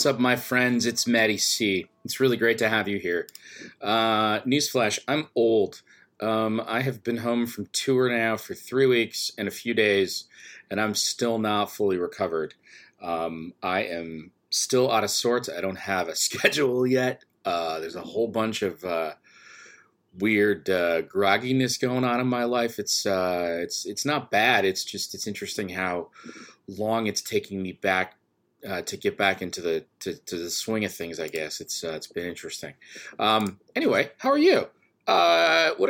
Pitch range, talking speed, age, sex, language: 90-120 Hz, 180 wpm, 30-49, male, English